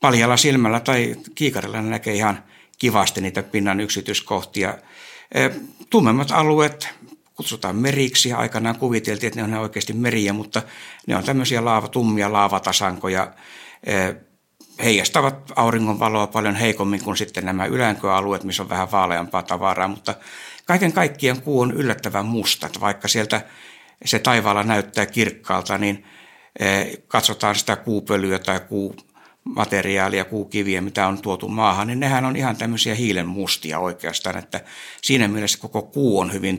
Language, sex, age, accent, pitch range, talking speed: Finnish, male, 60-79, native, 95-115 Hz, 135 wpm